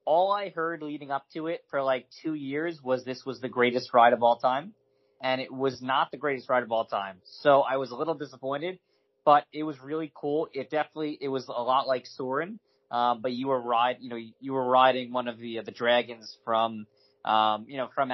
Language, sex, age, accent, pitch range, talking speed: English, male, 20-39, American, 120-140 Hz, 230 wpm